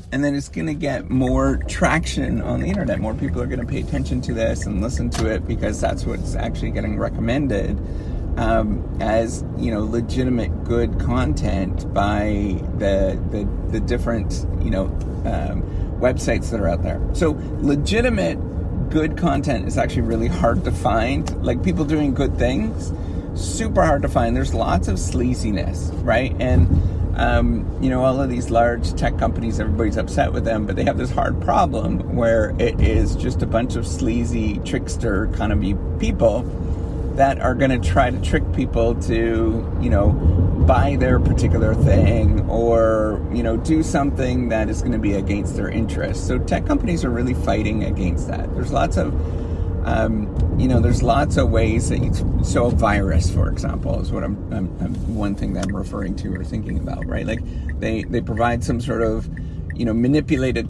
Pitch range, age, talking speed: 85-115 Hz, 30-49, 180 wpm